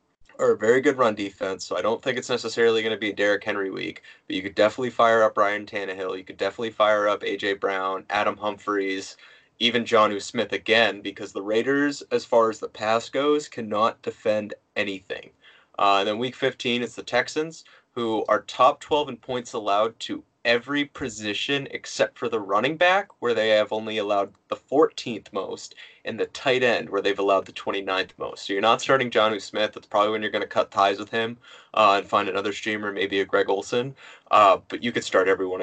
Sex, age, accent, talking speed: male, 20-39, American, 205 wpm